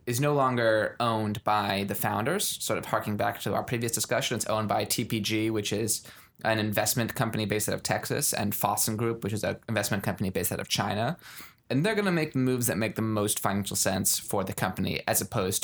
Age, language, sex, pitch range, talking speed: 20-39, English, male, 105-125 Hz, 220 wpm